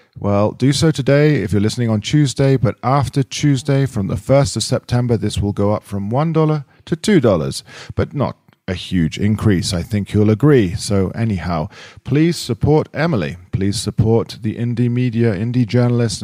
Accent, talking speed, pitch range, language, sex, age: British, 170 wpm, 105-135 Hz, English, male, 40-59